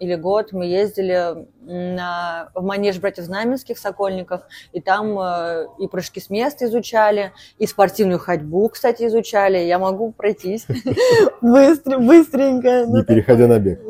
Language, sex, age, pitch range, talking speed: Russian, female, 20-39, 185-235 Hz, 130 wpm